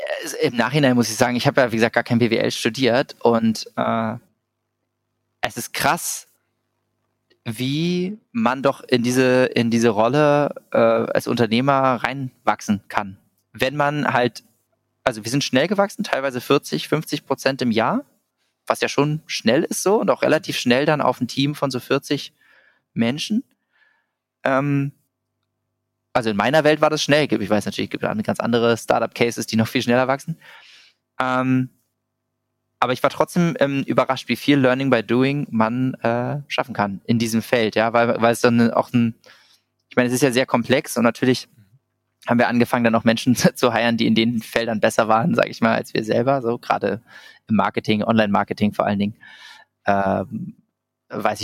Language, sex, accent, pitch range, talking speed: German, male, German, 115-135 Hz, 175 wpm